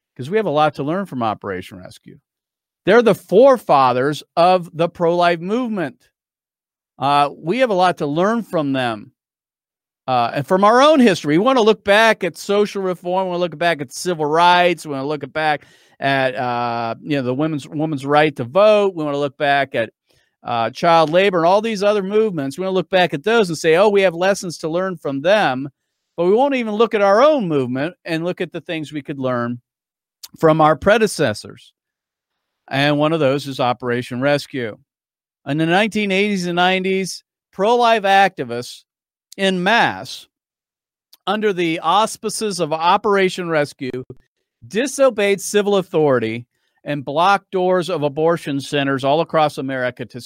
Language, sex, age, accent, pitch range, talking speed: English, male, 40-59, American, 145-195 Hz, 180 wpm